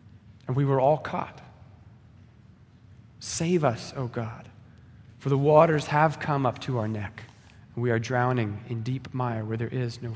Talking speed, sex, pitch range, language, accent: 170 wpm, male, 115-155 Hz, English, American